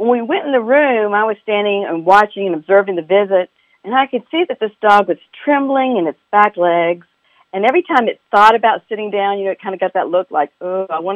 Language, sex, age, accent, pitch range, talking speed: English, female, 50-69, American, 185-240 Hz, 260 wpm